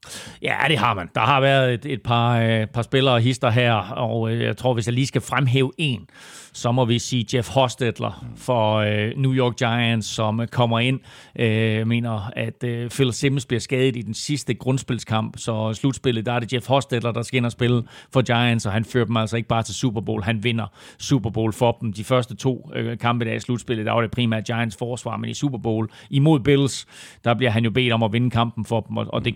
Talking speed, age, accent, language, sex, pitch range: 235 wpm, 40-59, native, Danish, male, 110-130 Hz